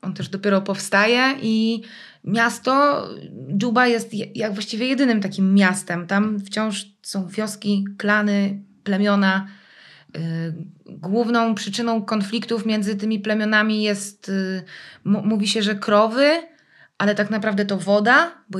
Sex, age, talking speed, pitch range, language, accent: female, 20-39, 115 wpm, 190-225 Hz, Polish, native